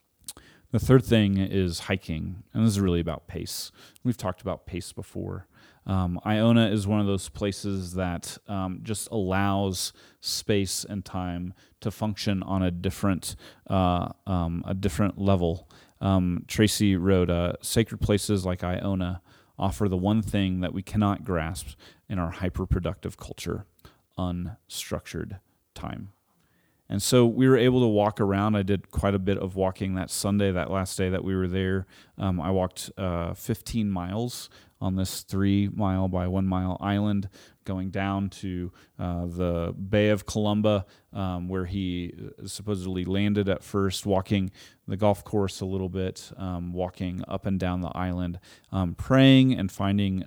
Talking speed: 155 wpm